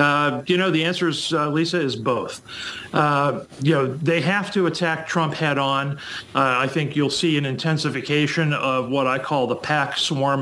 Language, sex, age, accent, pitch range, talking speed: English, male, 40-59, American, 125-150 Hz, 195 wpm